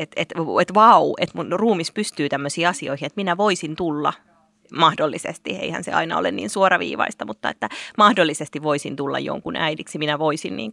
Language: Finnish